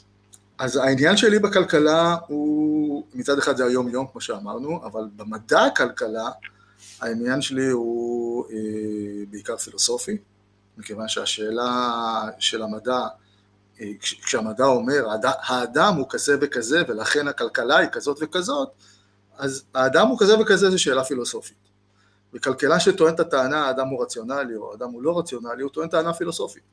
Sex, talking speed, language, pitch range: male, 135 wpm, Hebrew, 105-135 Hz